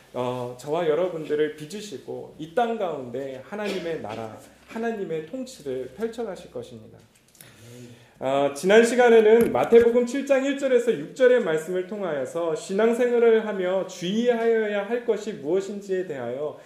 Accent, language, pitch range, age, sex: native, Korean, 165-255 Hz, 30-49, male